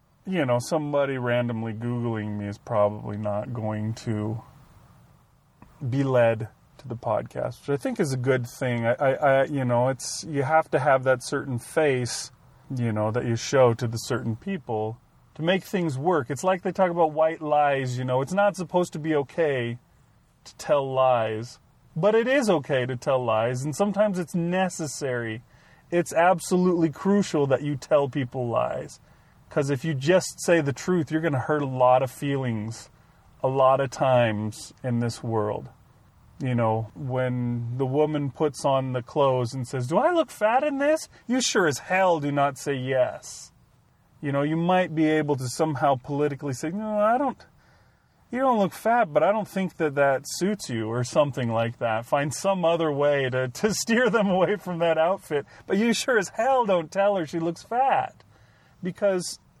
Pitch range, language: 125-175 Hz, English